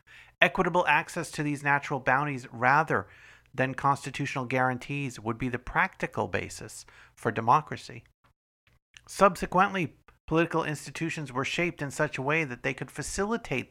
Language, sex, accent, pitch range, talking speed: English, male, American, 125-155 Hz, 130 wpm